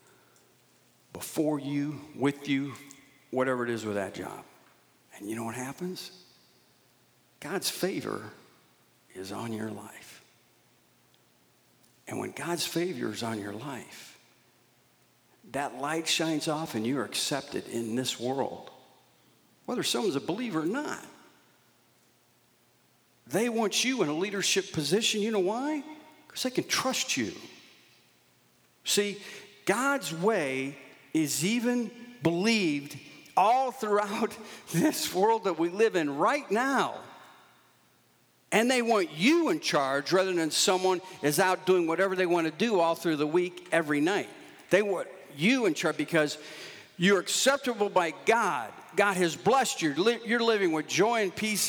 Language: English